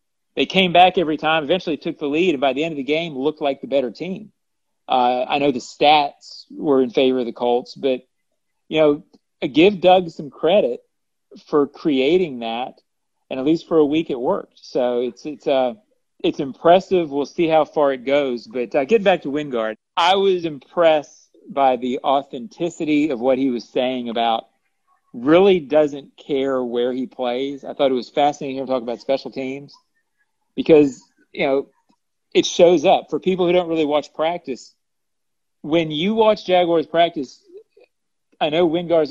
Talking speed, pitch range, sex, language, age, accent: 185 wpm, 130-170 Hz, male, English, 40-59, American